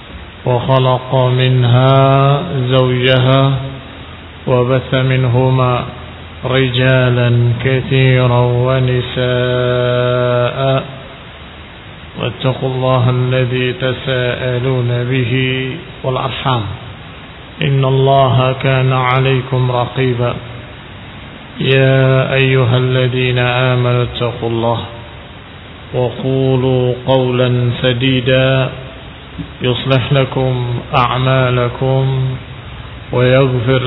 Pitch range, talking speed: 125-130 Hz, 55 wpm